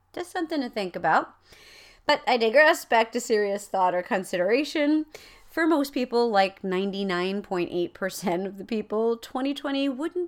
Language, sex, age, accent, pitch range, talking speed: English, female, 40-59, American, 170-245 Hz, 140 wpm